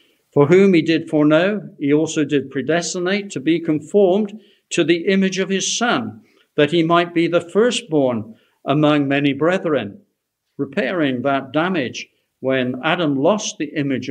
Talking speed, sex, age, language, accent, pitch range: 150 wpm, male, 60-79, English, British, 140-180 Hz